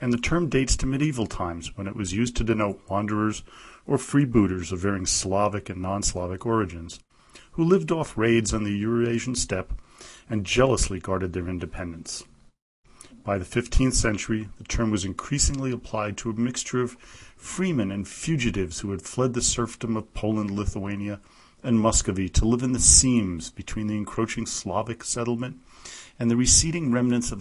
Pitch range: 95-120 Hz